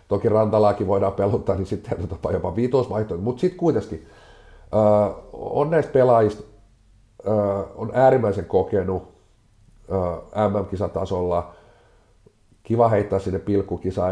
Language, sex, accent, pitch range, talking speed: Finnish, male, native, 95-110 Hz, 105 wpm